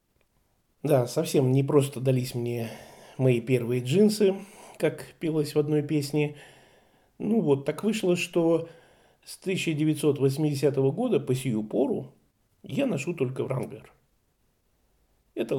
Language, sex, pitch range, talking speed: Russian, male, 130-185 Hz, 115 wpm